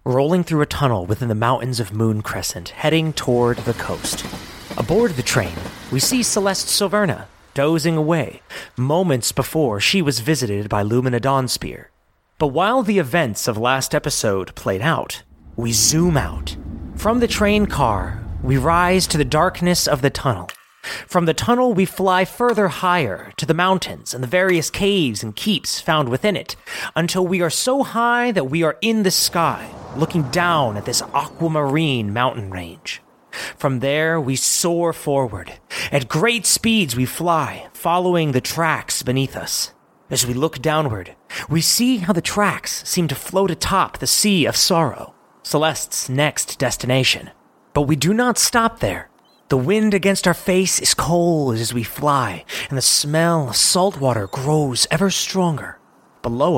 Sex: male